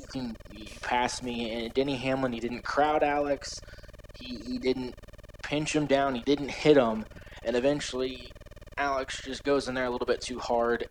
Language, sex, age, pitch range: Thai, male, 20-39, 110-130 Hz